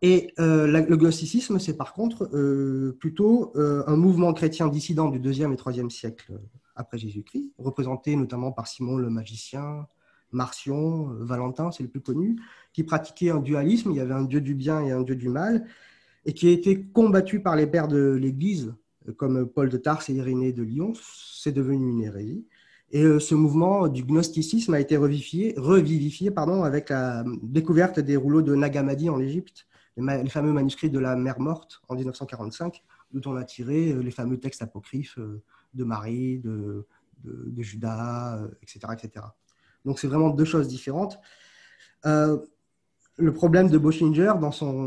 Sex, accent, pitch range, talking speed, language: male, French, 125-160 Hz, 175 wpm, French